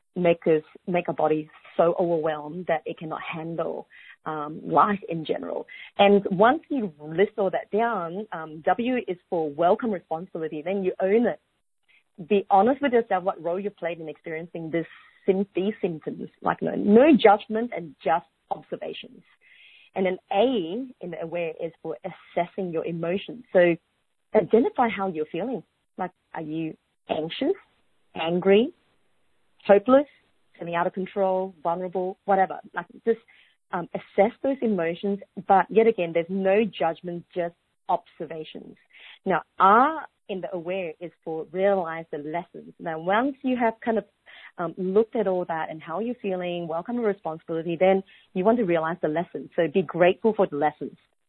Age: 30-49